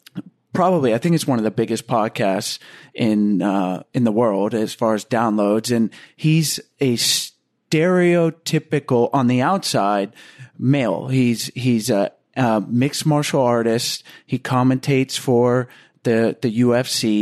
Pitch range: 120-150 Hz